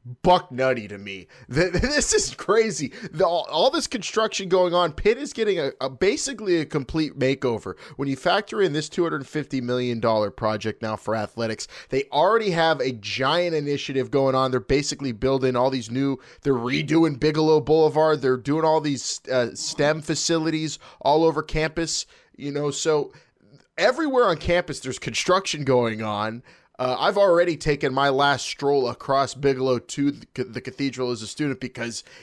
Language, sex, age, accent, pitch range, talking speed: English, male, 20-39, American, 125-165 Hz, 165 wpm